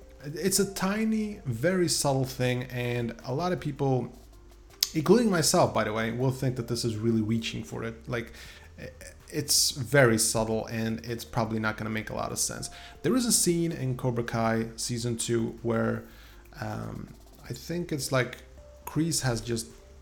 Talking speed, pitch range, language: 175 wpm, 110-135 Hz, English